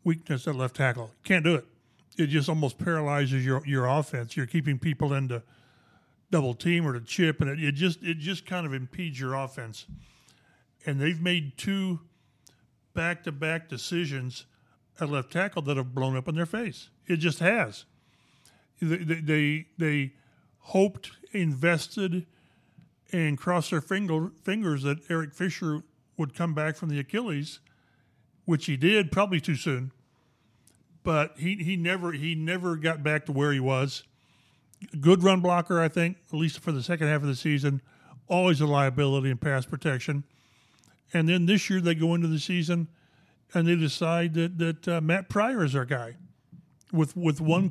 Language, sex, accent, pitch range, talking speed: English, male, American, 140-170 Hz, 165 wpm